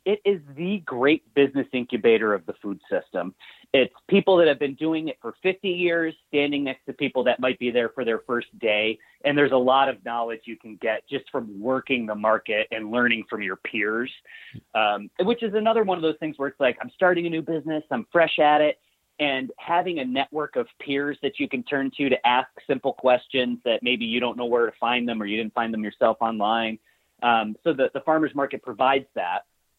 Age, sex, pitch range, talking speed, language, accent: 30-49, male, 120-160 Hz, 220 wpm, English, American